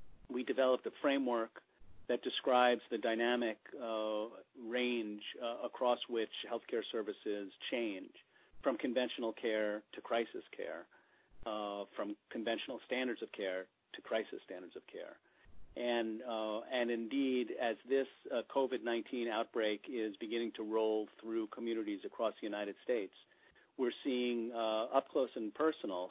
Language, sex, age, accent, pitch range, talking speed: English, male, 40-59, American, 105-120 Hz, 135 wpm